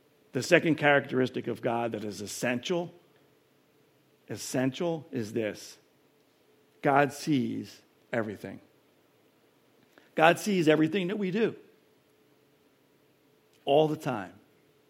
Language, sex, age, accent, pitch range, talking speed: English, male, 50-69, American, 125-160 Hz, 95 wpm